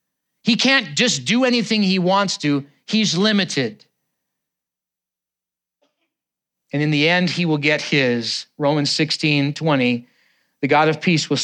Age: 40-59